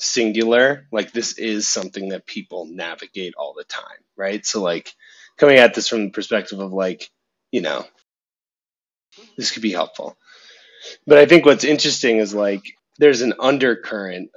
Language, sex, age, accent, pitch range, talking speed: English, male, 30-49, American, 100-135 Hz, 160 wpm